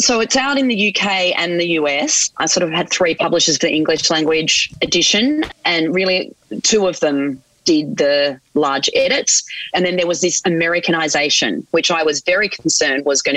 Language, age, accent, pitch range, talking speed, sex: English, 30-49, Australian, 145-190 Hz, 190 wpm, female